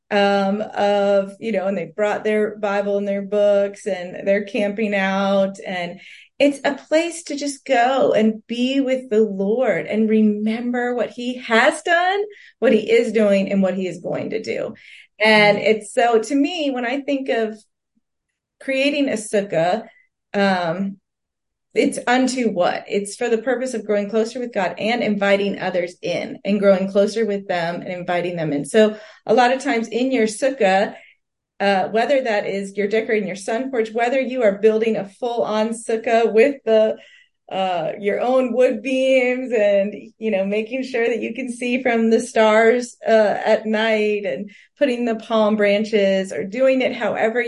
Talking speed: 175 wpm